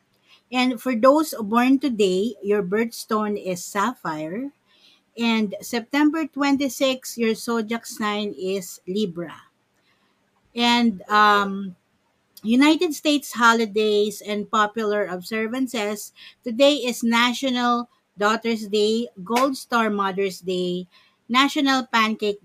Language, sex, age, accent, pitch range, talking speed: Filipino, female, 50-69, native, 200-250 Hz, 95 wpm